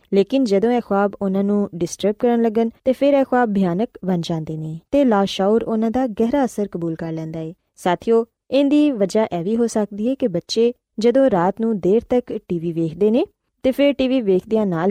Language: Punjabi